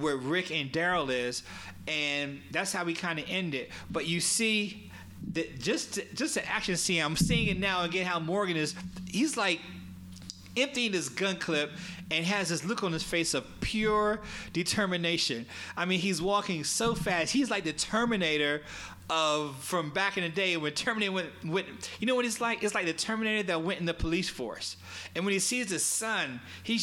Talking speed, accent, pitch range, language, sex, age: 195 wpm, American, 120-180 Hz, English, male, 30-49